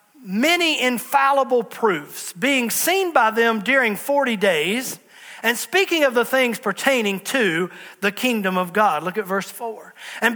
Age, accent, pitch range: 40-59, American, 210-275 Hz